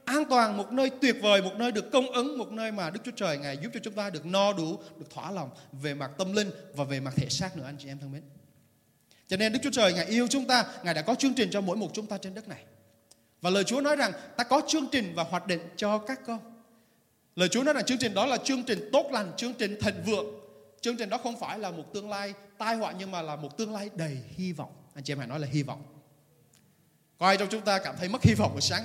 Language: Vietnamese